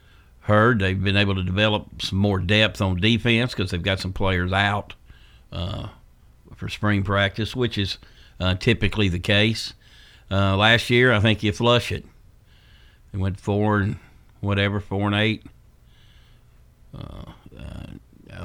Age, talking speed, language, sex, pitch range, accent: 50-69, 145 wpm, English, male, 95-110 Hz, American